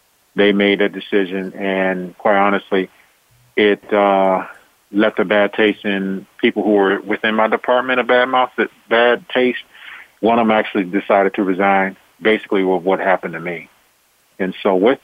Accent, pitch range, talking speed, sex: American, 95-105 Hz, 170 wpm, male